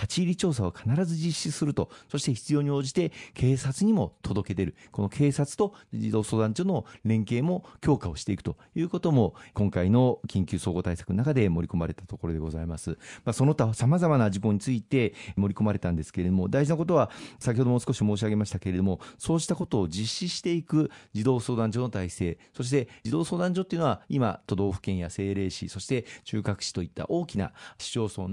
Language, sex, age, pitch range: Japanese, male, 40-59, 95-140 Hz